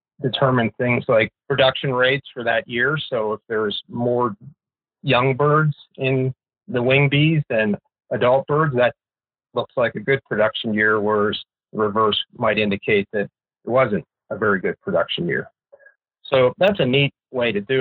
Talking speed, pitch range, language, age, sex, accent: 160 wpm, 110-140 Hz, English, 40-59, male, American